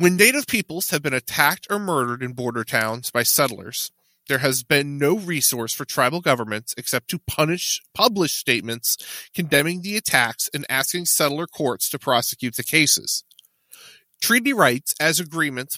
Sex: male